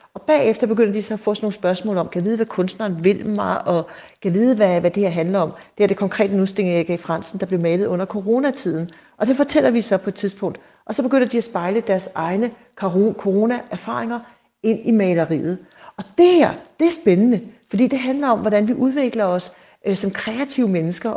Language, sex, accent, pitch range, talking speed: Danish, female, native, 180-225 Hz, 215 wpm